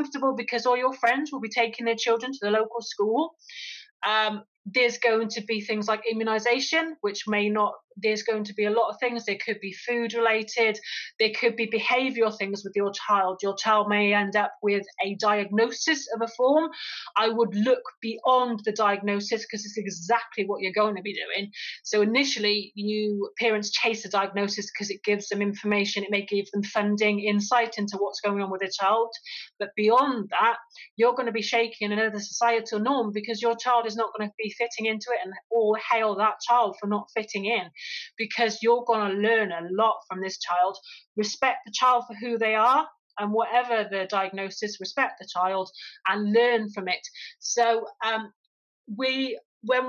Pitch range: 205-235 Hz